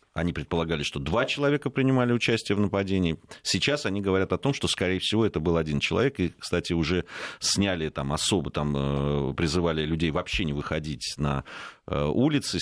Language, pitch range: Russian, 75-95 Hz